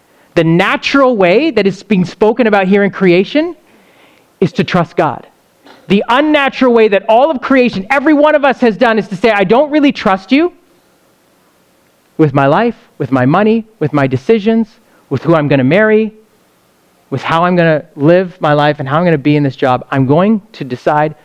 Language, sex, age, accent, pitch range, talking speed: English, male, 30-49, American, 160-245 Hz, 205 wpm